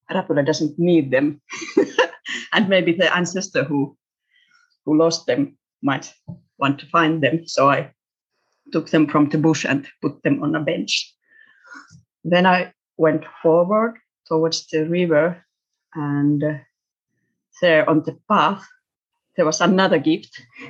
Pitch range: 155-200 Hz